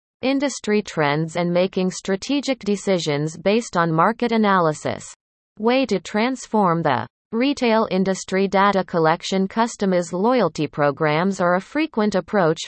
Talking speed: 120 wpm